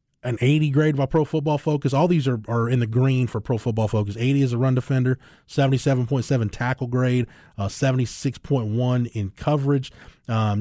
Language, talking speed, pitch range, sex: English, 175 wpm, 120-150 Hz, male